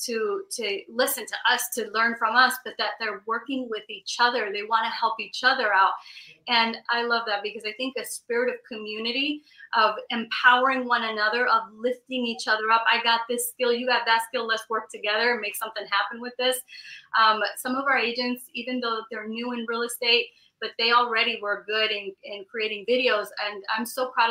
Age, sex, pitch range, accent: 30-49, female, 220-260 Hz, American